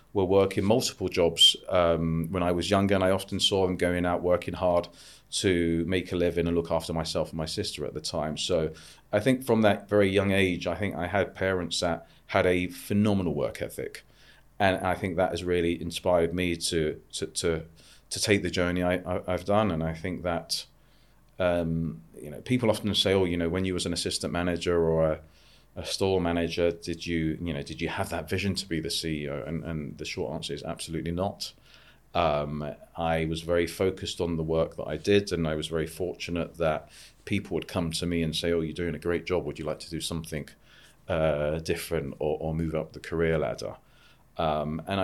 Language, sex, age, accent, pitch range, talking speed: English, male, 30-49, British, 80-95 Hz, 215 wpm